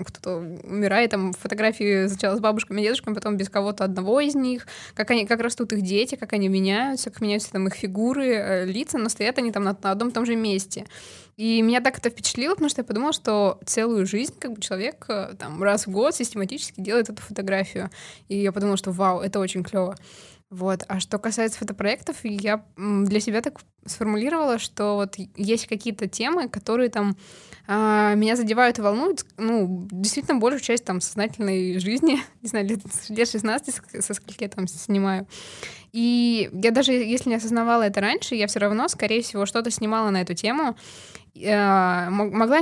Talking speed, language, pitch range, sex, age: 180 wpm, Russian, 200-235 Hz, female, 20-39